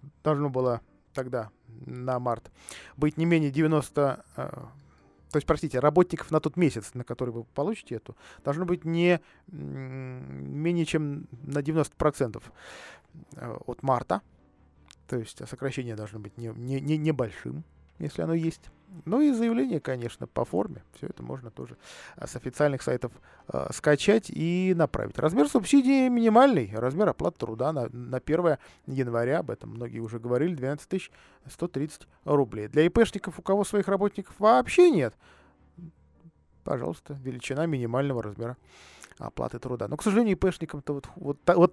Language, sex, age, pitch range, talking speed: Russian, male, 20-39, 125-180 Hz, 135 wpm